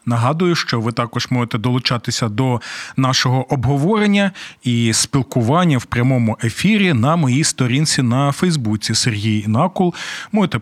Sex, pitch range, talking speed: male, 120-180 Hz, 125 wpm